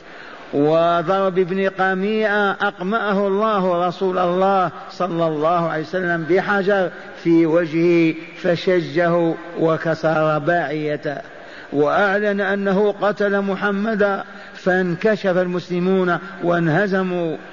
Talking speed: 80 wpm